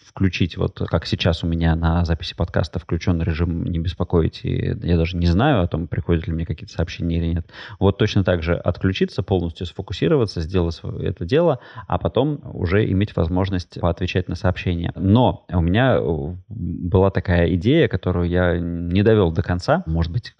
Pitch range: 85-105 Hz